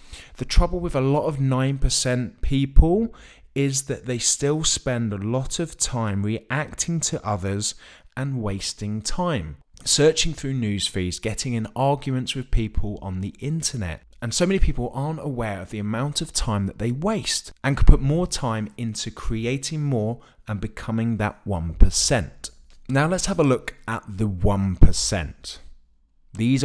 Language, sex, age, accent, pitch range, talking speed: English, male, 20-39, British, 100-135 Hz, 160 wpm